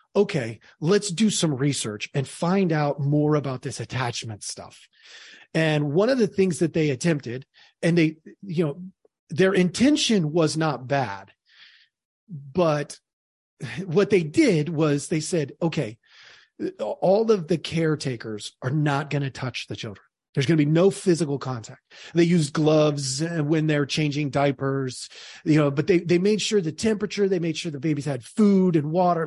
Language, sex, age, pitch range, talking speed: English, male, 30-49, 145-185 Hz, 165 wpm